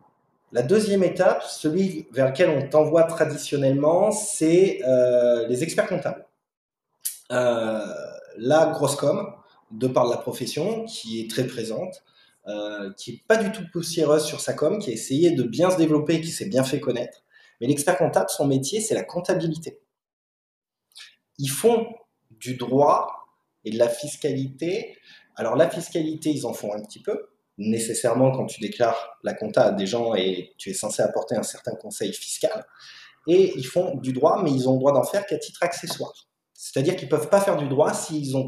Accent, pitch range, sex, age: French, 130-180 Hz, male, 20-39